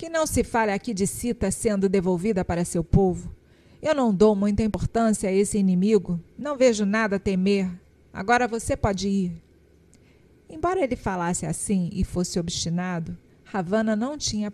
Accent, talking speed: Brazilian, 160 wpm